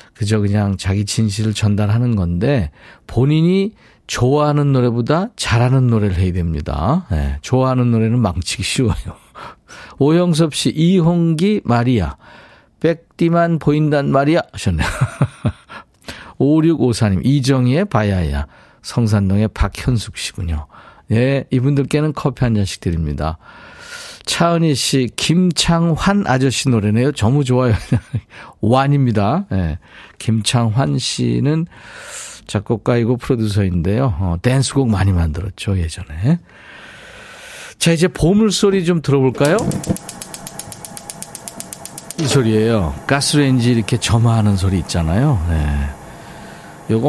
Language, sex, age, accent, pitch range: Korean, male, 50-69, native, 100-145 Hz